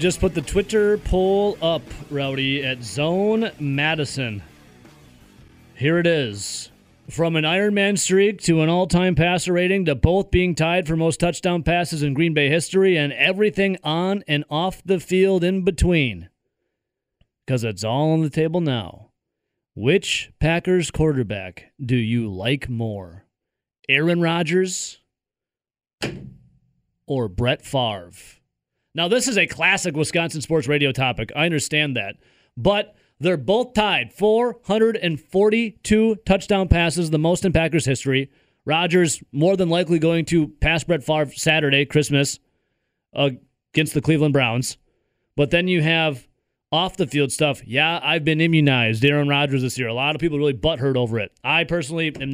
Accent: American